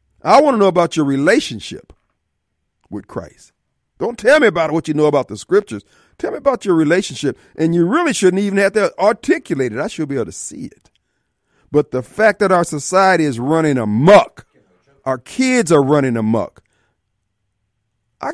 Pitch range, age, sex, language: 130-205 Hz, 50-69, male, Japanese